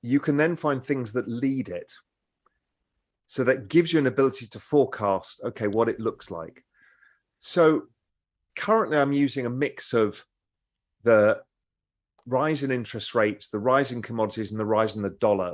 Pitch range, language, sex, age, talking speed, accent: 105-135 Hz, English, male, 30-49, 160 wpm, British